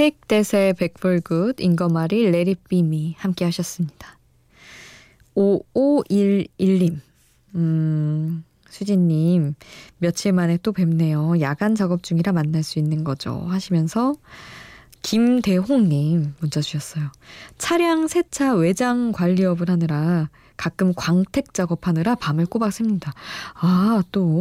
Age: 20-39